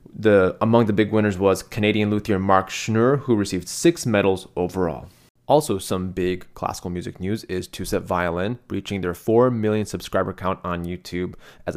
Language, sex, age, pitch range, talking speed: English, male, 20-39, 90-100 Hz, 175 wpm